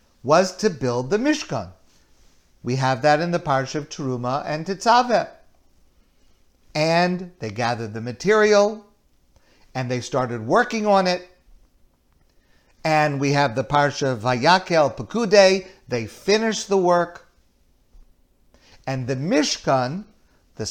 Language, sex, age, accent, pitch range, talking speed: English, male, 50-69, American, 120-180 Hz, 115 wpm